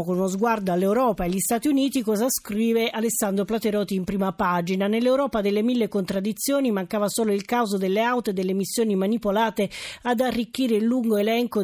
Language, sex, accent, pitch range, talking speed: Italian, female, native, 205-250 Hz, 175 wpm